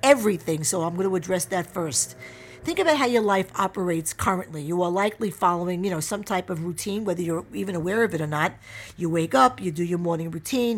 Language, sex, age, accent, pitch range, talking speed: English, female, 50-69, American, 175-225 Hz, 230 wpm